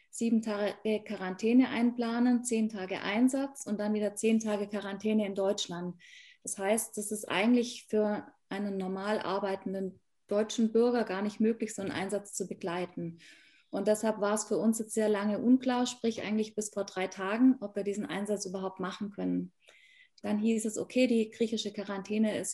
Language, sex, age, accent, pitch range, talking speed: German, female, 20-39, German, 205-235 Hz, 175 wpm